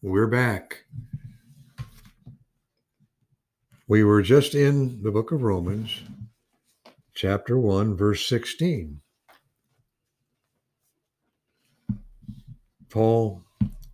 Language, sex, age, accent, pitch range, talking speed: English, male, 60-79, American, 110-150 Hz, 65 wpm